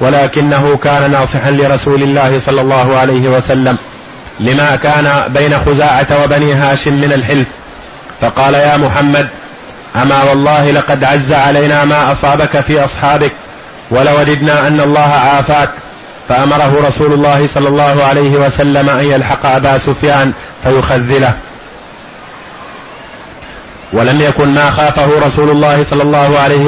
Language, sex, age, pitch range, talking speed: Arabic, male, 30-49, 140-145 Hz, 120 wpm